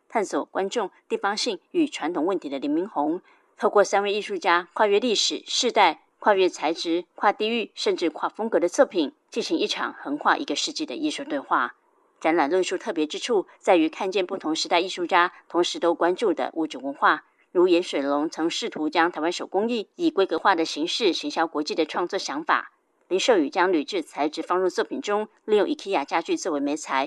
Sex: female